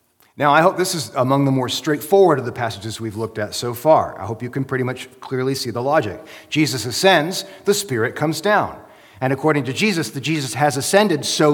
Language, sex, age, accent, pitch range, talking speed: English, male, 40-59, American, 115-150 Hz, 220 wpm